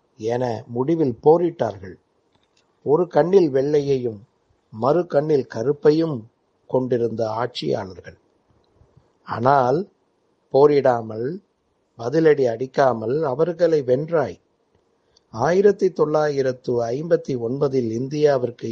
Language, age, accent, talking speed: Tamil, 60-79, native, 60 wpm